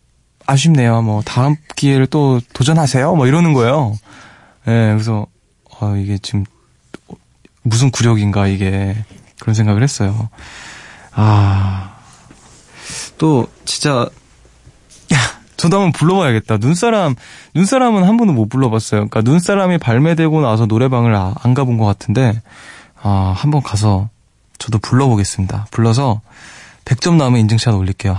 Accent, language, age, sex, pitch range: native, Korean, 20-39, male, 105-140 Hz